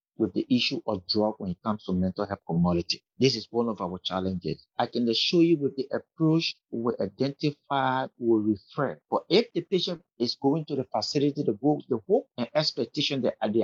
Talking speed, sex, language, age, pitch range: 195 wpm, male, English, 50-69, 110-145 Hz